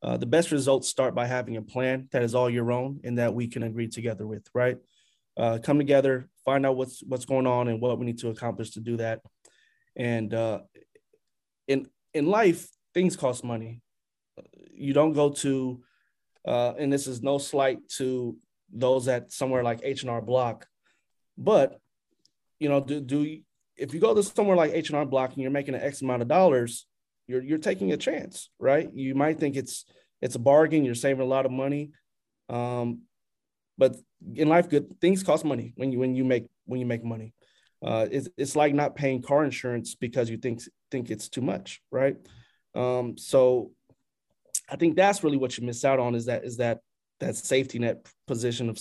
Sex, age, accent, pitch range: male, 20-39, American, 120-140 Hz